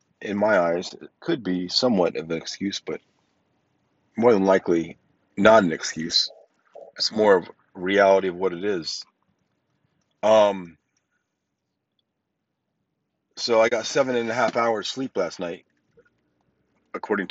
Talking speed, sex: 135 wpm, male